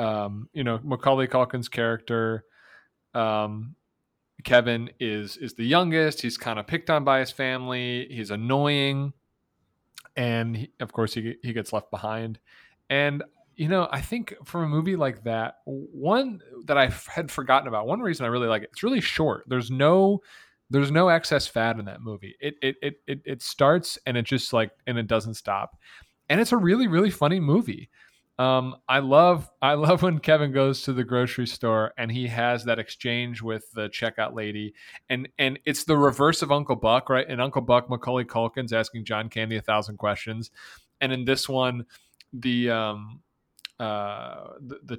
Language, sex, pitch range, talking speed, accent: English, male, 115-140 Hz, 180 wpm, American